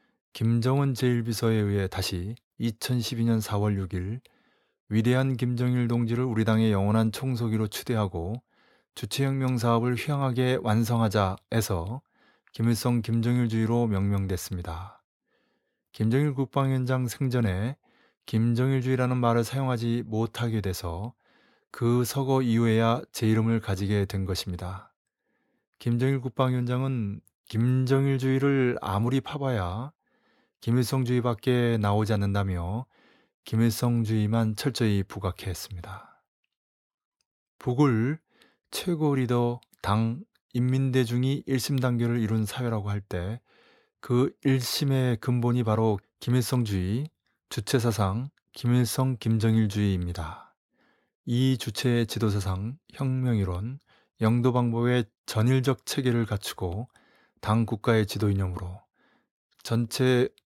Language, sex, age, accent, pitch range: Korean, male, 20-39, native, 110-130 Hz